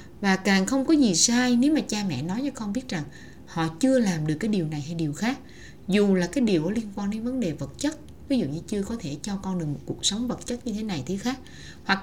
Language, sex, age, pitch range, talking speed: Vietnamese, female, 20-39, 170-250 Hz, 280 wpm